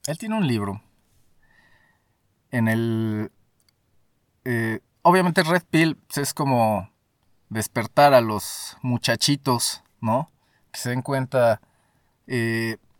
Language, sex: Spanish, male